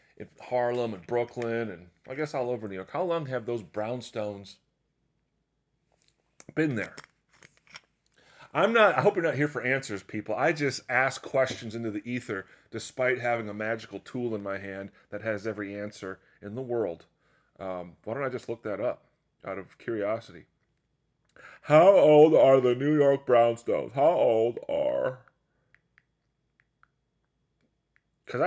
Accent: American